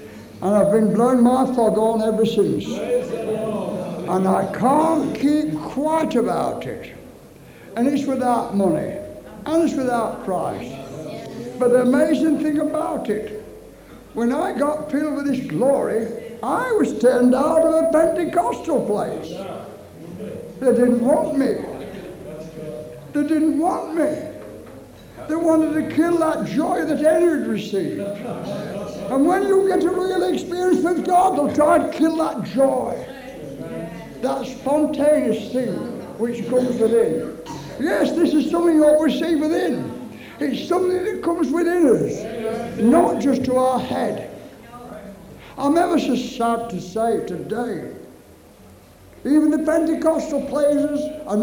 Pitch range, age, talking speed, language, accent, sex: 230-310 Hz, 60-79, 135 wpm, English, American, male